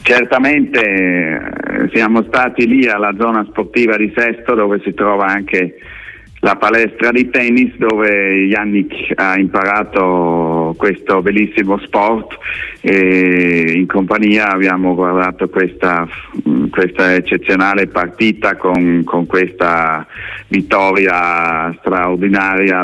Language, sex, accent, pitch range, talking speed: Italian, male, native, 90-105 Hz, 100 wpm